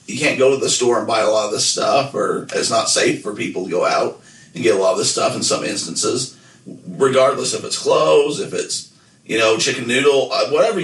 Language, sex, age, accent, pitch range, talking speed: English, male, 40-59, American, 120-135 Hz, 240 wpm